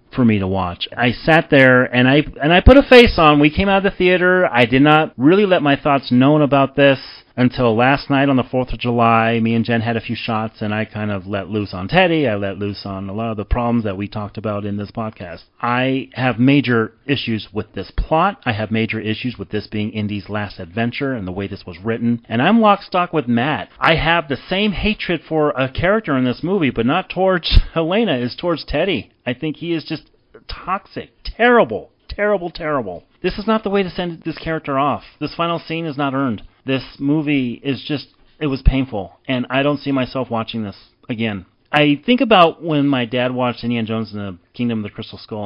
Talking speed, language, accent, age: 230 wpm, English, American, 30-49